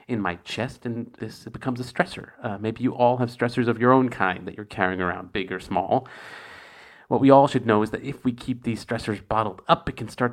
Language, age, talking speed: English, 40-59, 245 wpm